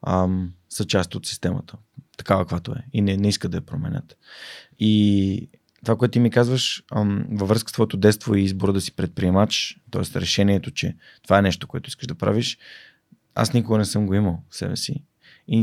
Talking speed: 190 wpm